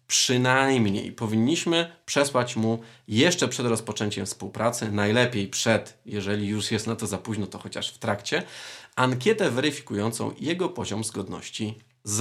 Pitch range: 105-125 Hz